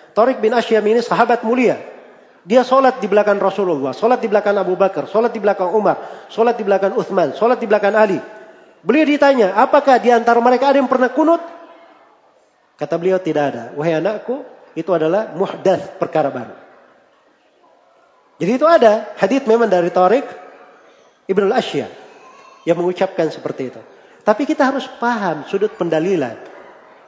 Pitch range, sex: 195-260 Hz, male